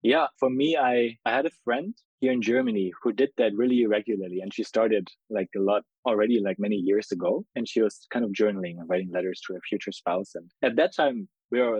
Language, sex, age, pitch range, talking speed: English, male, 20-39, 95-125 Hz, 235 wpm